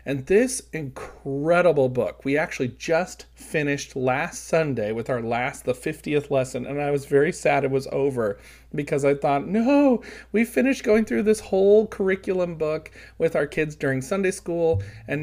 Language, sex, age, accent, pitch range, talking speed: English, male, 40-59, American, 135-185 Hz, 170 wpm